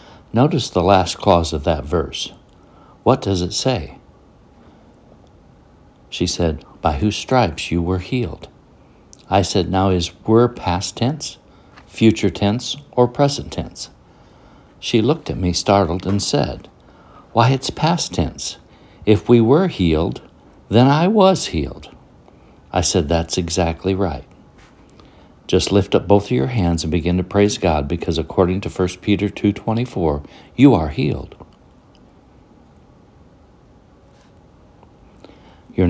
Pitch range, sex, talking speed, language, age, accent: 85-115 Hz, male, 130 wpm, English, 60-79, American